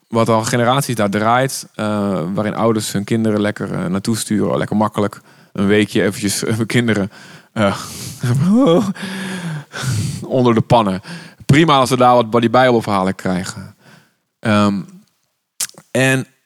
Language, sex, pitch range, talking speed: Dutch, male, 110-150 Hz, 135 wpm